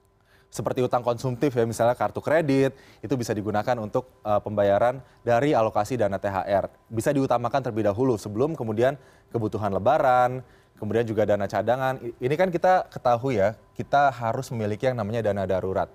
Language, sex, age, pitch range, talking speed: Indonesian, male, 20-39, 105-140 Hz, 155 wpm